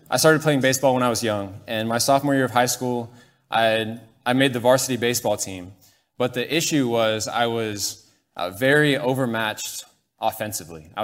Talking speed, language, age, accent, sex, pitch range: 180 wpm, English, 20-39, American, male, 110-130 Hz